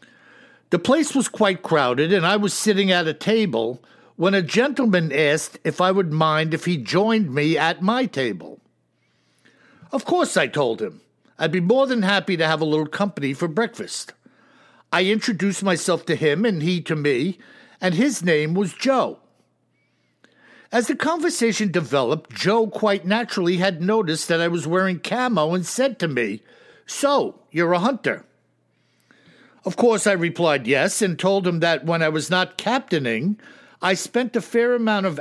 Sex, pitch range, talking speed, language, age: male, 165-225 Hz, 170 wpm, English, 60-79